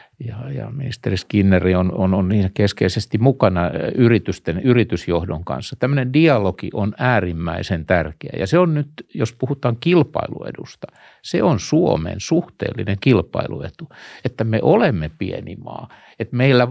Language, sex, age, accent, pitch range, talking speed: Finnish, male, 60-79, native, 95-125 Hz, 130 wpm